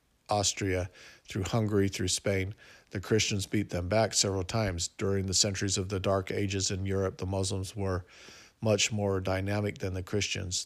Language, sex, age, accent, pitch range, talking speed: English, male, 50-69, American, 95-100 Hz, 170 wpm